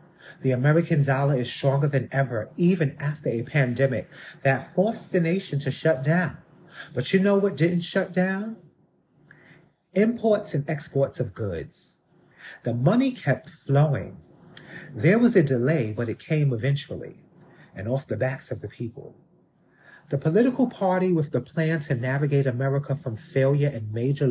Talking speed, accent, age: 155 wpm, American, 30-49